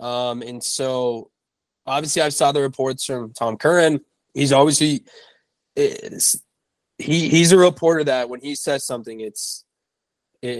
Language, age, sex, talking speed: English, 20-39, male, 145 wpm